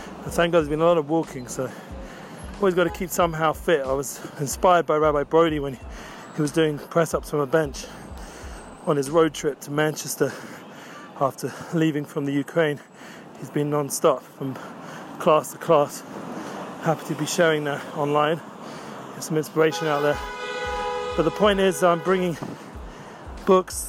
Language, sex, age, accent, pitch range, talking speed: English, male, 30-49, British, 145-170 Hz, 165 wpm